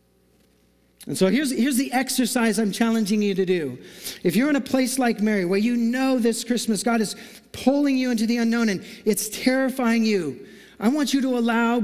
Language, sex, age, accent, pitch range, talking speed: English, male, 40-59, American, 135-225 Hz, 200 wpm